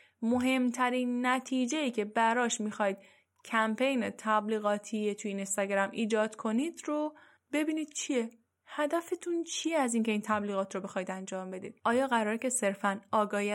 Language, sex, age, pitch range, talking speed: Persian, female, 10-29, 210-260 Hz, 135 wpm